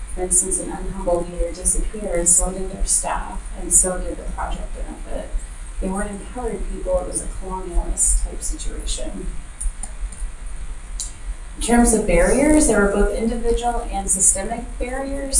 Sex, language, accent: female, English, American